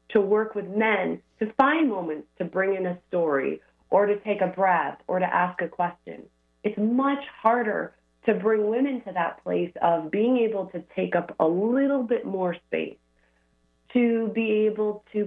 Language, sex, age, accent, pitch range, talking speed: English, female, 30-49, American, 165-215 Hz, 180 wpm